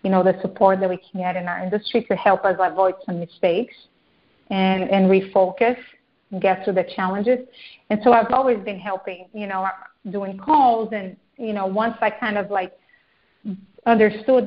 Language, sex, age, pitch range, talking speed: English, female, 30-49, 190-220 Hz, 185 wpm